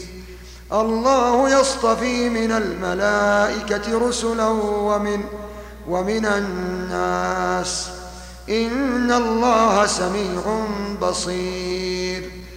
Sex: male